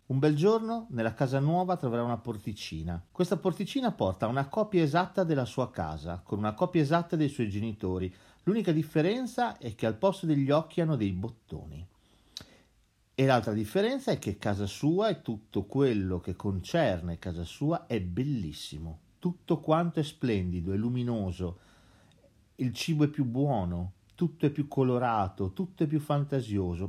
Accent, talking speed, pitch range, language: native, 160 wpm, 95-150 Hz, Italian